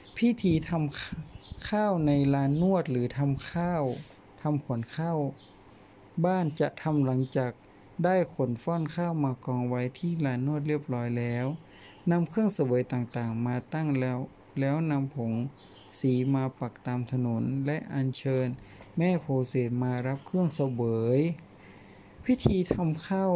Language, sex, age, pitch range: Thai, male, 60-79, 125-155 Hz